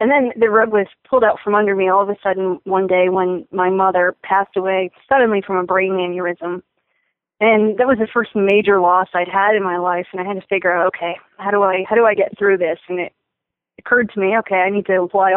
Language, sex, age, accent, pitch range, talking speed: English, female, 30-49, American, 185-220 Hz, 250 wpm